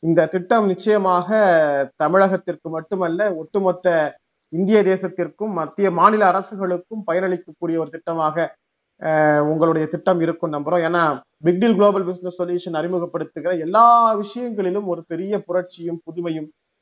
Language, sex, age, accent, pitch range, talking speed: Tamil, male, 30-49, native, 170-215 Hz, 105 wpm